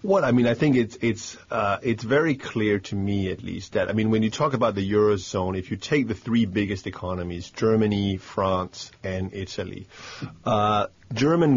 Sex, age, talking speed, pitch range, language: male, 30-49, 190 wpm, 100-115 Hz, English